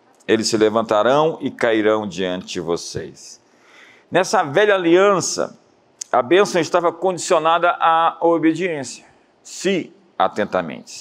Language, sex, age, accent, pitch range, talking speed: Portuguese, male, 50-69, Brazilian, 145-210 Hz, 105 wpm